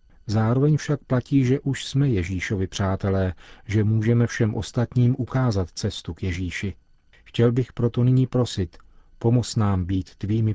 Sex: male